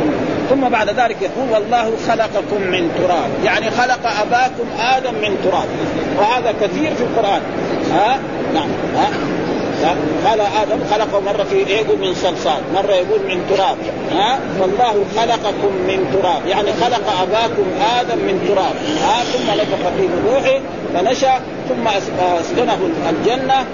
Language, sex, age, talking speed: Arabic, male, 50-69, 130 wpm